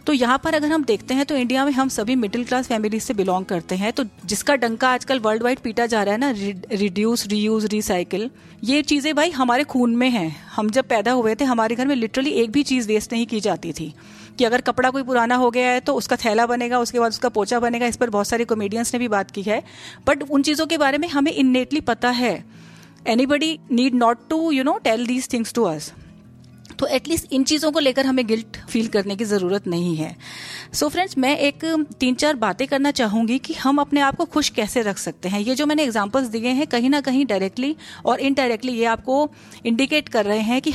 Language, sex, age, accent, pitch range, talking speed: Hindi, female, 40-59, native, 220-270 Hz, 230 wpm